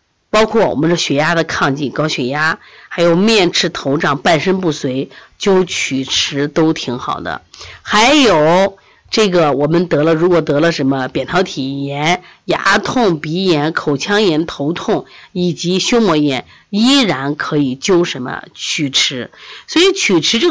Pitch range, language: 150-210 Hz, Chinese